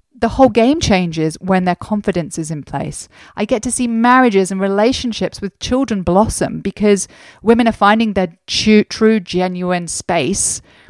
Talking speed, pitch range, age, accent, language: 160 wpm, 170-220 Hz, 30-49, British, English